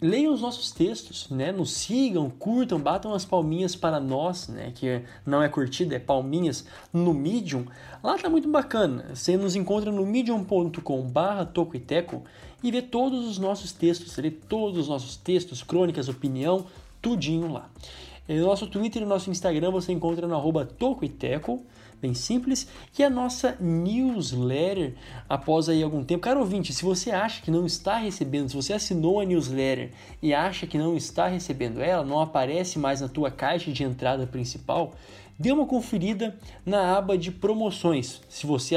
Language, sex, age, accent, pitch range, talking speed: Portuguese, male, 20-39, Brazilian, 140-195 Hz, 165 wpm